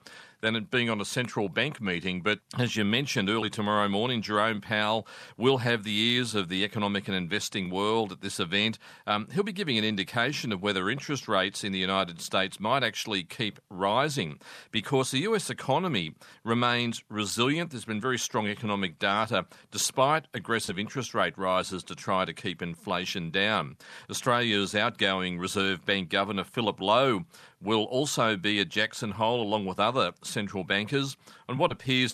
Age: 40-59